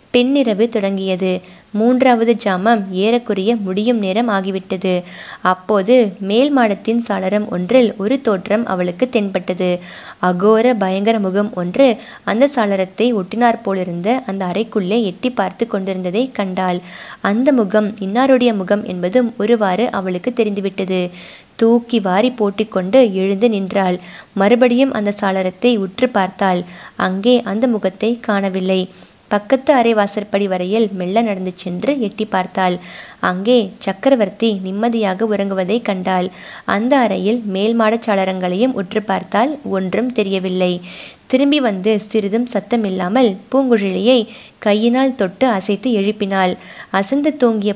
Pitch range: 190-235 Hz